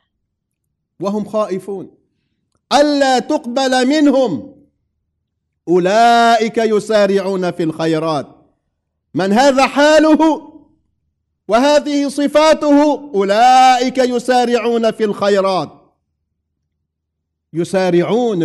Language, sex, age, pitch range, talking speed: English, male, 50-69, 175-250 Hz, 60 wpm